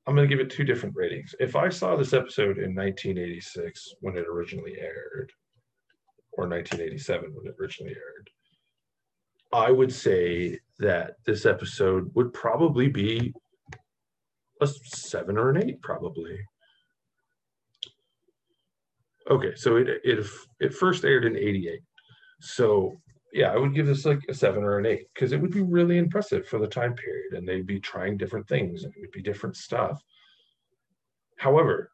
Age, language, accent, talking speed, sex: 40-59, English, American, 160 wpm, male